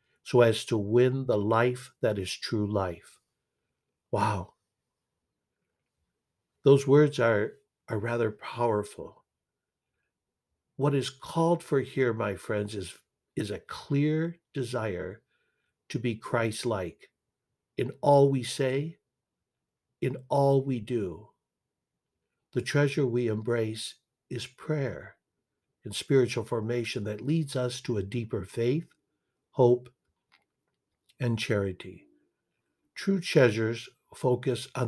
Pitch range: 105-135 Hz